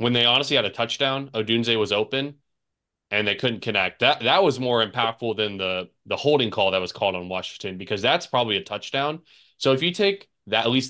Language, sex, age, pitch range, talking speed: English, male, 20-39, 105-125 Hz, 220 wpm